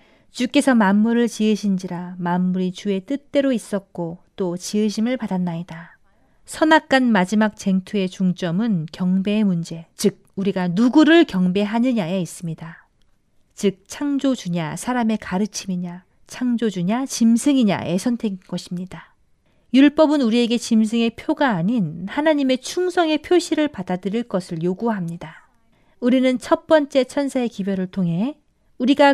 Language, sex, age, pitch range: Korean, female, 40-59, 185-260 Hz